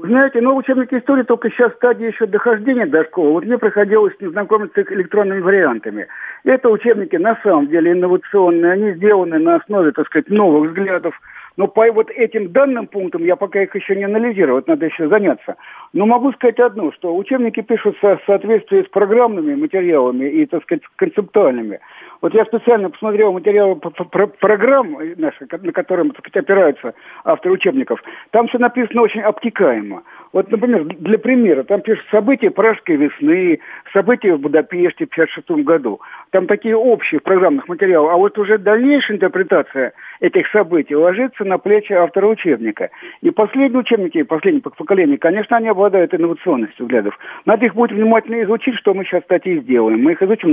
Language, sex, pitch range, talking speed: Russian, male, 185-245 Hz, 165 wpm